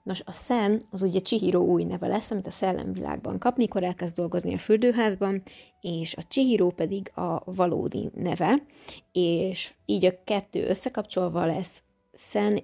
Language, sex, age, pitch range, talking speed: Hungarian, female, 20-39, 175-205 Hz, 145 wpm